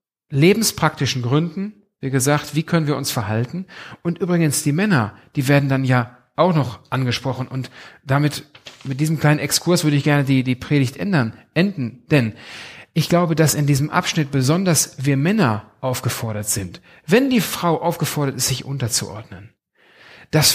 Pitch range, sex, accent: 120-160 Hz, male, German